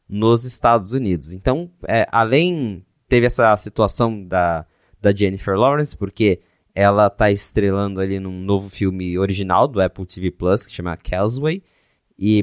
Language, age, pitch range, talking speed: Portuguese, 20-39, 95-120 Hz, 150 wpm